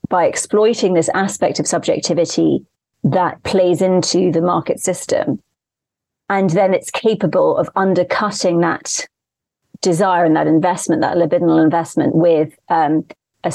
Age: 30-49